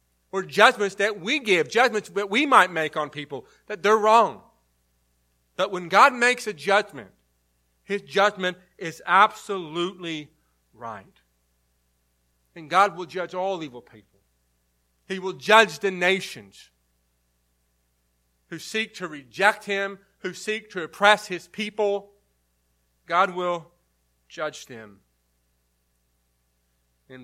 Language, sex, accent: English, male, American